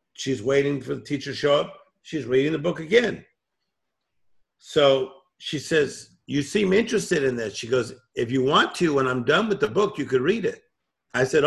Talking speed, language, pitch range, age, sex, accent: 205 wpm, English, 115-140 Hz, 50-69, male, American